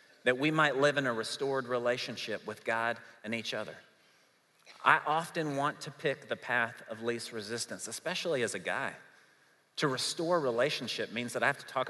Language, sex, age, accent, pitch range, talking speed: English, male, 40-59, American, 120-155 Hz, 180 wpm